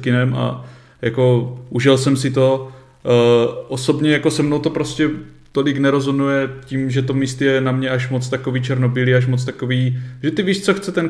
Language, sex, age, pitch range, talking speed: Czech, male, 20-39, 125-135 Hz, 190 wpm